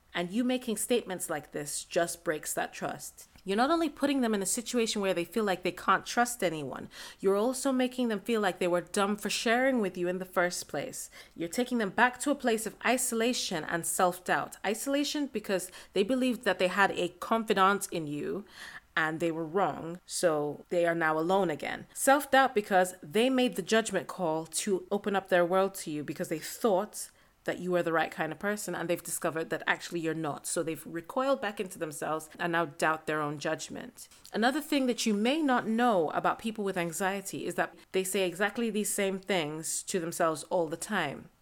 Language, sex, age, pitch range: English, female, 30-49, 175-235 Hz